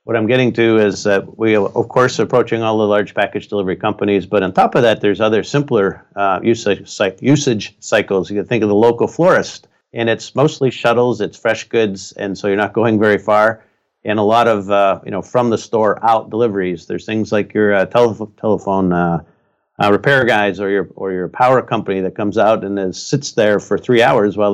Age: 50-69